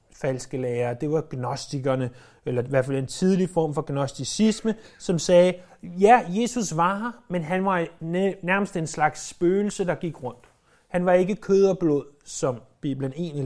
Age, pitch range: 30-49, 135-190 Hz